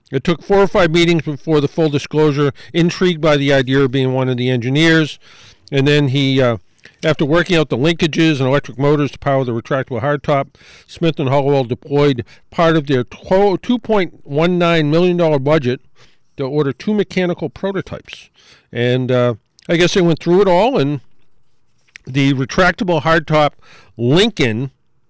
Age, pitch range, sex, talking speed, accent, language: 50-69, 135-175 Hz, male, 160 wpm, American, English